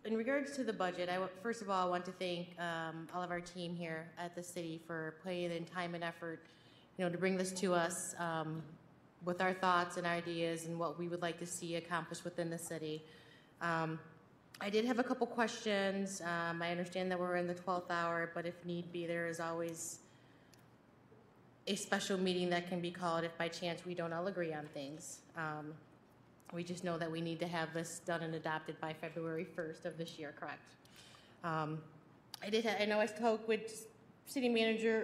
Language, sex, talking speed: English, female, 210 wpm